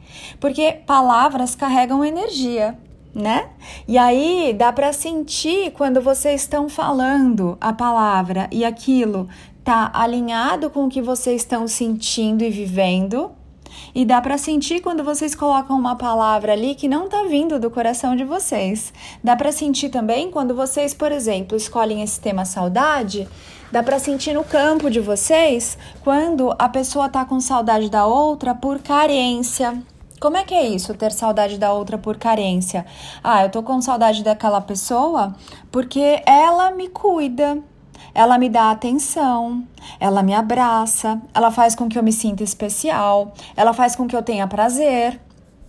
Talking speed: 155 wpm